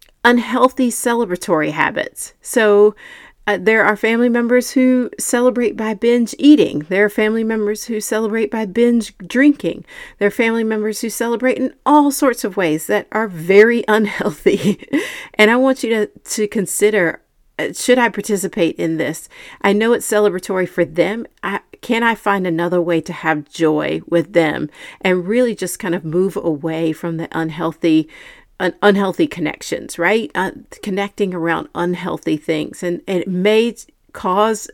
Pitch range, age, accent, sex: 170-220 Hz, 40-59, American, female